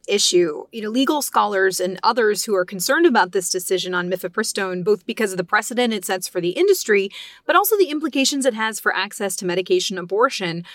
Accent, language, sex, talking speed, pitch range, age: American, English, female, 200 wpm, 185-240 Hz, 30-49